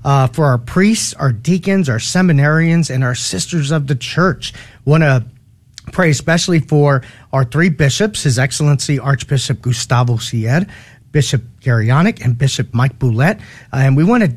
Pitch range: 125-160 Hz